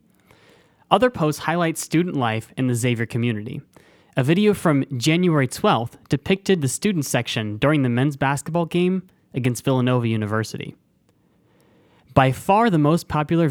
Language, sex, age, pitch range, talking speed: English, male, 20-39, 125-160 Hz, 140 wpm